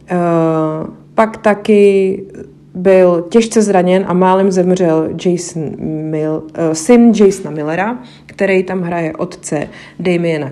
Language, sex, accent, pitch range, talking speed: Czech, female, native, 165-195 Hz, 115 wpm